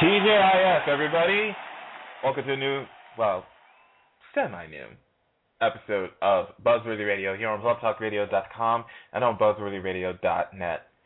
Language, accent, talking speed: English, American, 100 wpm